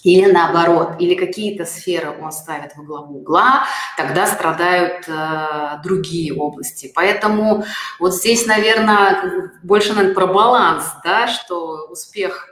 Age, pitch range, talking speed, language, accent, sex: 30-49, 170-215 Hz, 120 wpm, Russian, native, female